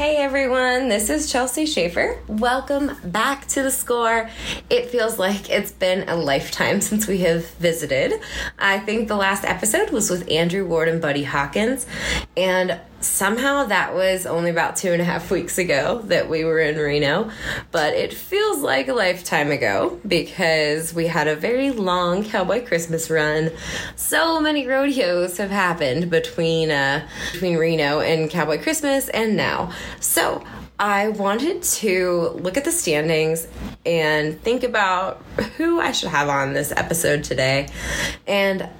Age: 20-39